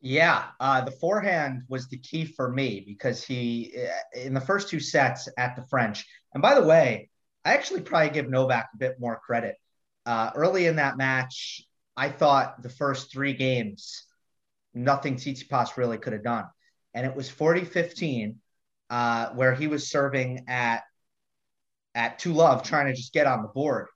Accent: American